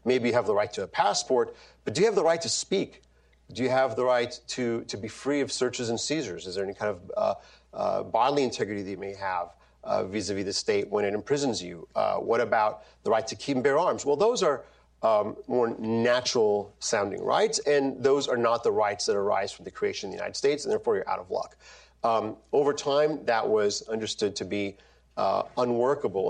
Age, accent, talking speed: 40-59, American, 225 wpm